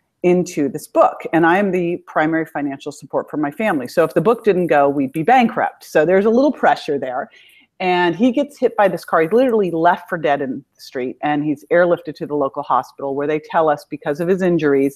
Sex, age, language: female, 40-59, English